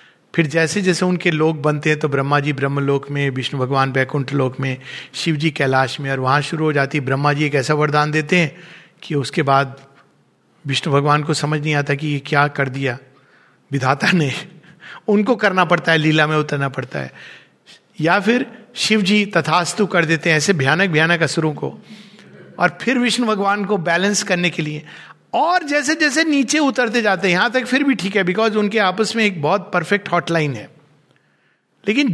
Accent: native